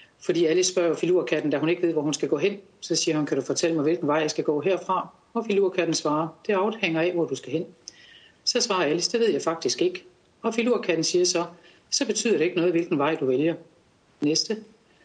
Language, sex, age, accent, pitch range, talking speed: Danish, female, 60-79, native, 155-190 Hz, 230 wpm